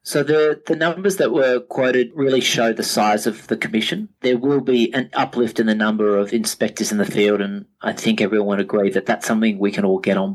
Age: 30-49